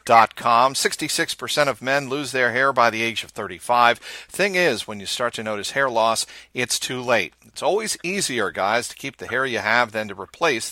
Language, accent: English, American